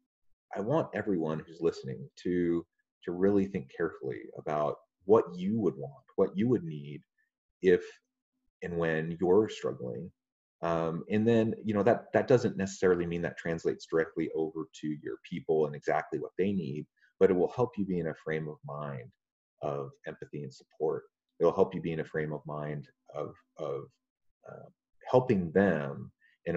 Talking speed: 175 wpm